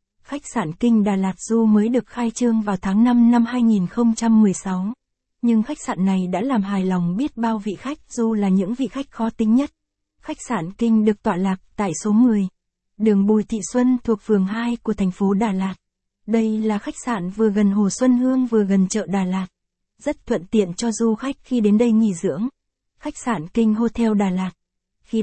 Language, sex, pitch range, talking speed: Vietnamese, female, 200-235 Hz, 210 wpm